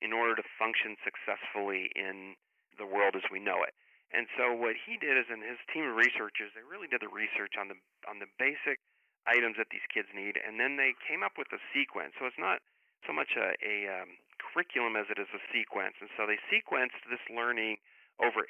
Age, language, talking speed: 40-59, English, 215 wpm